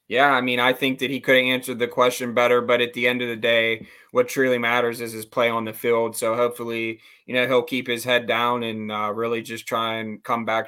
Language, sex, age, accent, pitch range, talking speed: English, male, 20-39, American, 115-135 Hz, 260 wpm